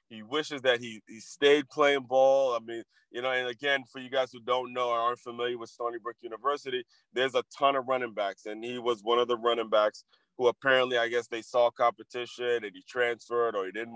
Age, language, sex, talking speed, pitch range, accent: 20-39, English, male, 230 wpm, 115-140 Hz, American